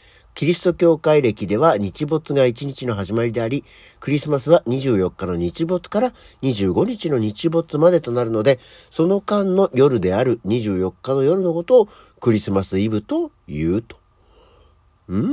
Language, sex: Japanese, male